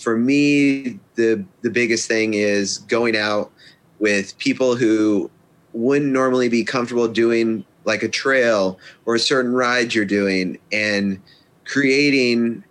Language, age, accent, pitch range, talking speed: English, 30-49, American, 105-130 Hz, 130 wpm